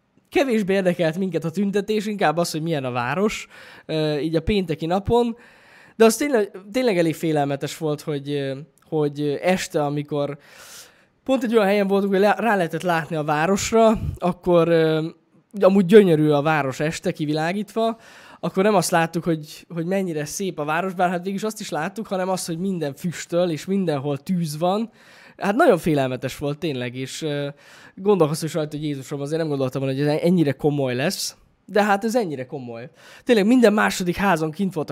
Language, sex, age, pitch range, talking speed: Hungarian, male, 10-29, 150-195 Hz, 170 wpm